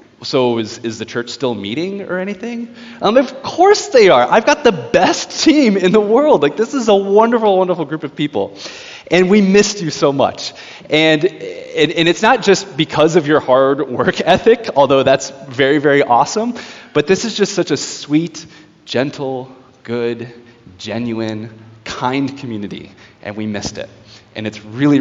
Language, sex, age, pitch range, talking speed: English, male, 20-39, 120-185 Hz, 175 wpm